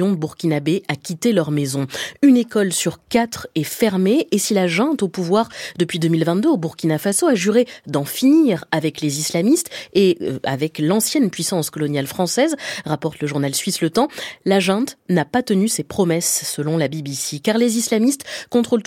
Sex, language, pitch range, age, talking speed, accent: female, French, 160-230 Hz, 20-39, 180 wpm, French